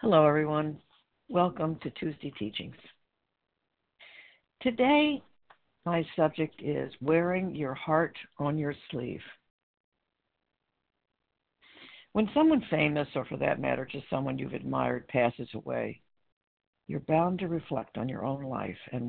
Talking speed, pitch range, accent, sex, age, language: 120 wpm, 125-160 Hz, American, female, 60-79, English